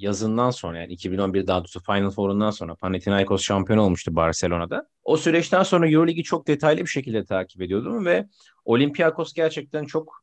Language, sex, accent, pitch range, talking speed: Turkish, male, native, 110-165 Hz, 160 wpm